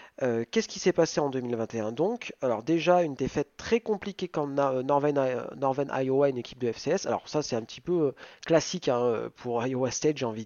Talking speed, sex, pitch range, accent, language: 205 wpm, male, 125-170 Hz, French, French